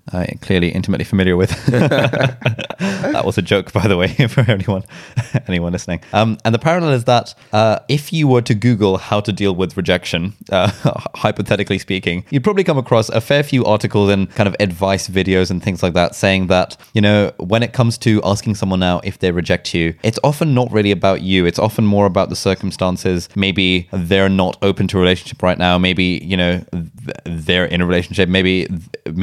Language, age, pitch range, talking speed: English, 20-39, 90-105 Hz, 205 wpm